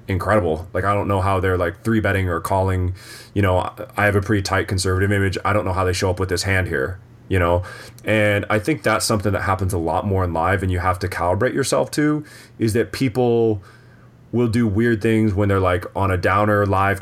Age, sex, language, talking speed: 20-39, male, English, 235 wpm